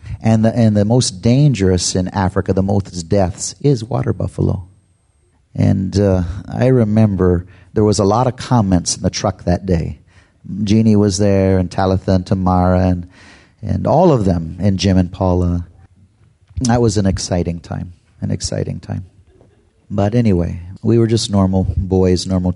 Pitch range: 95-115 Hz